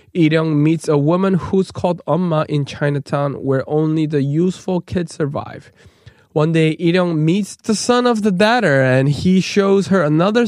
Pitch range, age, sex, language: 150-210 Hz, 20-39, male, Korean